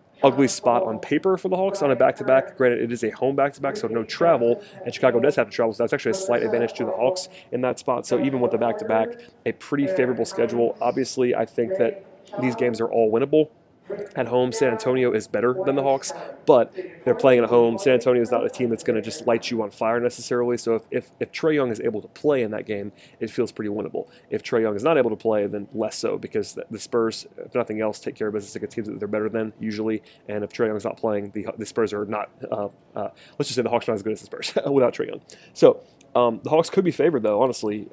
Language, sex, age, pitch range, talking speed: English, male, 30-49, 110-130 Hz, 265 wpm